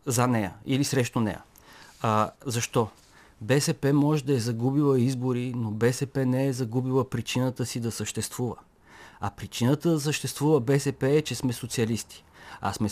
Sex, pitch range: male, 120-145 Hz